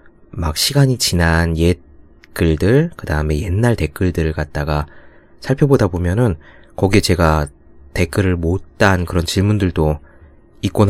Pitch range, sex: 80-100 Hz, male